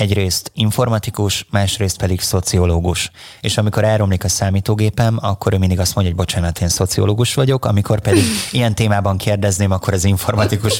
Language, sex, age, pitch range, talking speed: Hungarian, male, 30-49, 90-110 Hz, 155 wpm